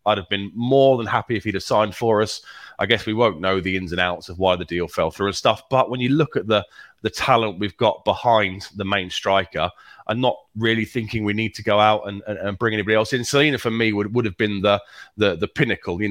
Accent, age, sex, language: British, 30-49, male, English